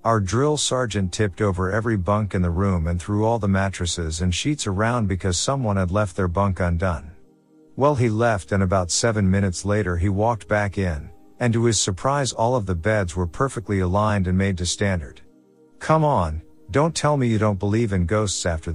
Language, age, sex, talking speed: English, 50-69, male, 200 wpm